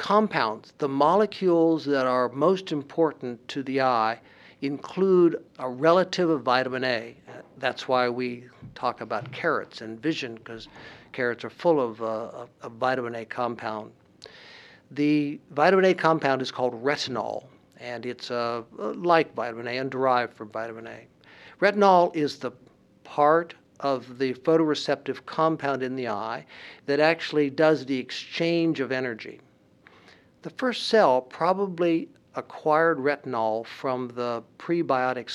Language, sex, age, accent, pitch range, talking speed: English, male, 60-79, American, 125-165 Hz, 135 wpm